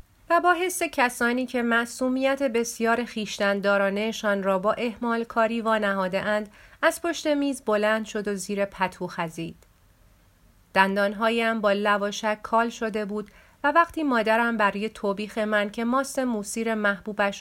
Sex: female